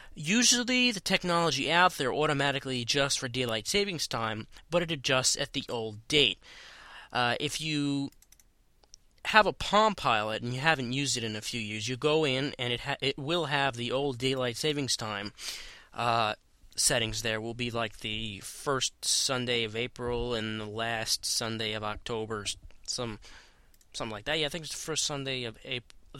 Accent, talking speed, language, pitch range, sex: American, 180 wpm, English, 110-155 Hz, male